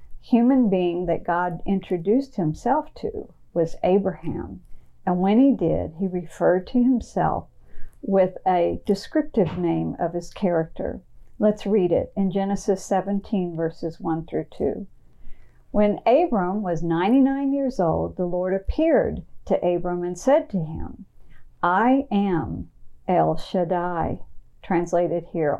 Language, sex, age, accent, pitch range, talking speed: English, female, 50-69, American, 170-210 Hz, 130 wpm